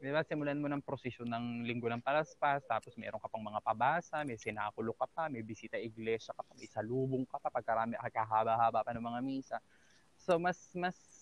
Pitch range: 115-145 Hz